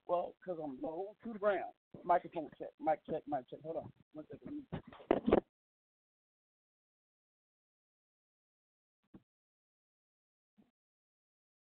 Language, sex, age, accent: English, male, 40-59, American